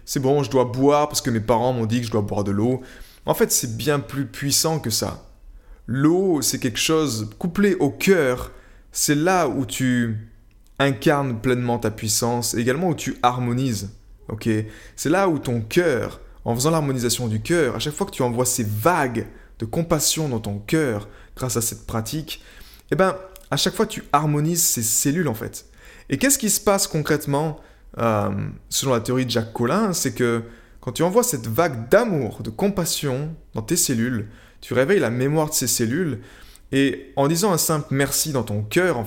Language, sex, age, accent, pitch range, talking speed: French, male, 20-39, French, 115-160 Hz, 195 wpm